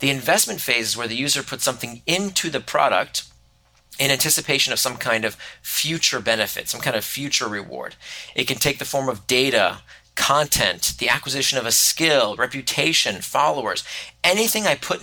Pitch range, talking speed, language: 120-165 Hz, 170 wpm, English